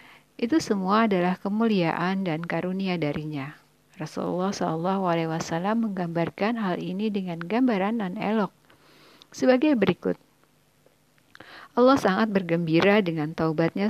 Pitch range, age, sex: 170-220 Hz, 50-69, female